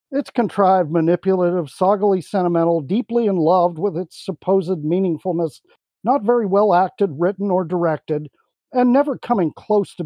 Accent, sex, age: American, male, 50-69